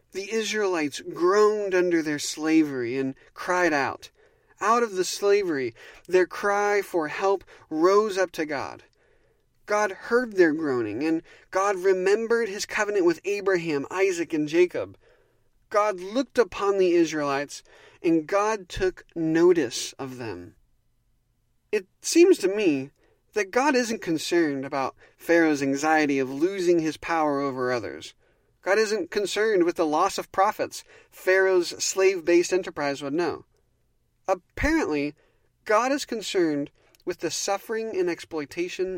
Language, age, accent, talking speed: English, 40-59, American, 130 wpm